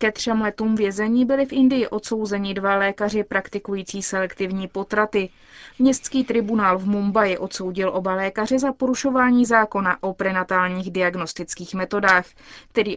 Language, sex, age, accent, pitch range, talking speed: Czech, female, 20-39, native, 185-215 Hz, 130 wpm